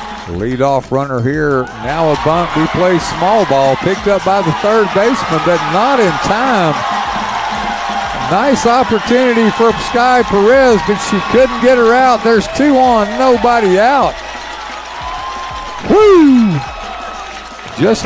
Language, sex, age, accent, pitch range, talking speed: English, male, 50-69, American, 195-260 Hz, 130 wpm